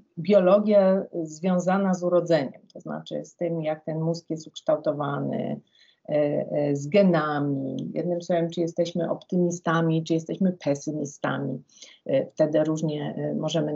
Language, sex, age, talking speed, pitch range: Polish, female, 40-59, 115 wpm, 160-190 Hz